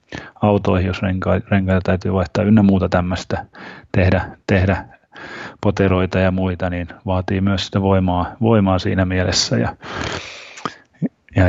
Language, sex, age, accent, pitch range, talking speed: Finnish, male, 30-49, native, 95-105 Hz, 125 wpm